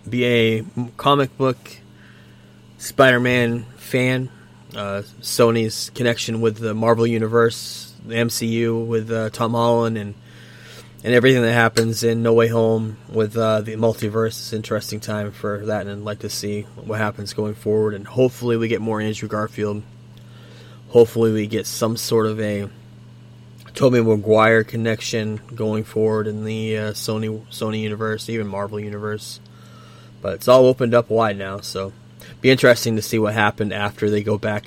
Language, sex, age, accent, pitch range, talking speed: English, male, 20-39, American, 105-115 Hz, 160 wpm